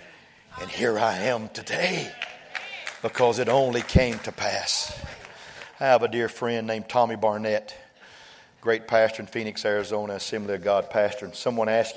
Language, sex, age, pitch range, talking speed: English, male, 50-69, 120-165 Hz, 155 wpm